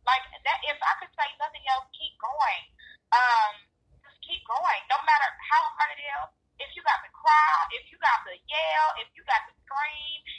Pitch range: 260-360 Hz